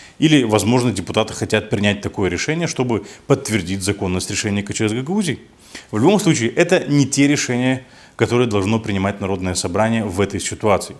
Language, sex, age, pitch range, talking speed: Russian, male, 20-39, 100-125 Hz, 155 wpm